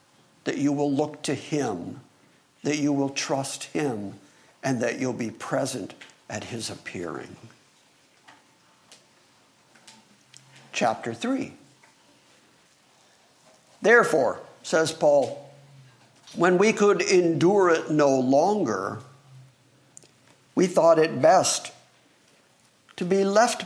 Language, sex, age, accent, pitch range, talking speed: English, male, 60-79, American, 135-185 Hz, 95 wpm